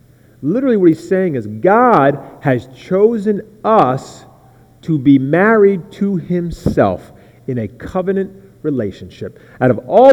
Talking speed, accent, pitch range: 125 wpm, American, 125-190 Hz